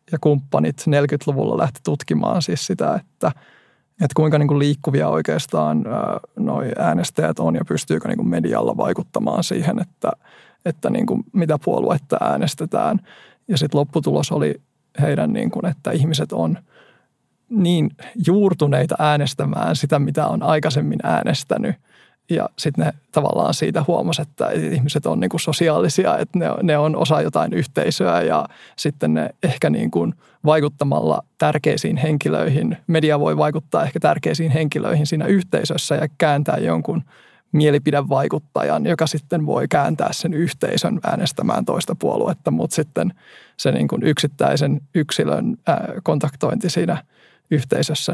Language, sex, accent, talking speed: Finnish, male, native, 115 wpm